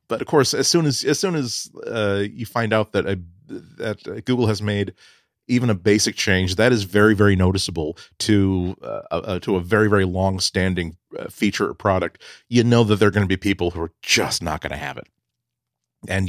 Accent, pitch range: American, 95-120 Hz